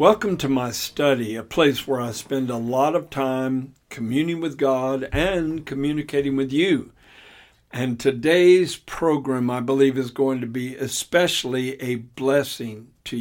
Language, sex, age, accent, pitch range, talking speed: English, male, 60-79, American, 125-160 Hz, 150 wpm